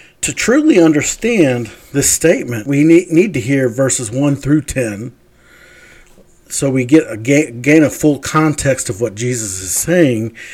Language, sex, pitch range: English, male, 125-170 Hz